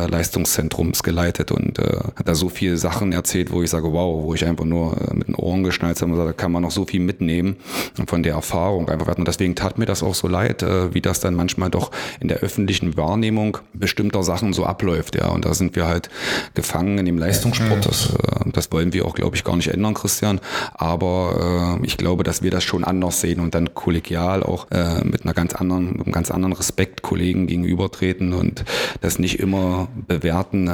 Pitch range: 85-100 Hz